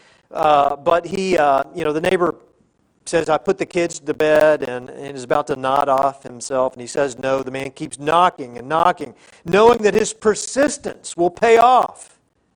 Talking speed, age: 190 wpm, 50-69